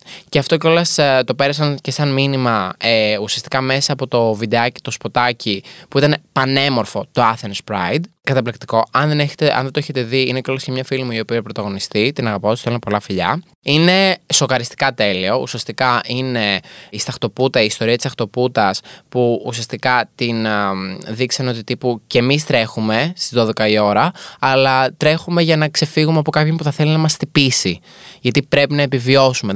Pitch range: 115-150 Hz